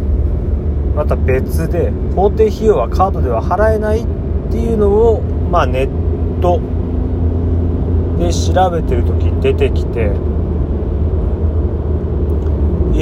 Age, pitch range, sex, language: 30-49, 80-90 Hz, male, Japanese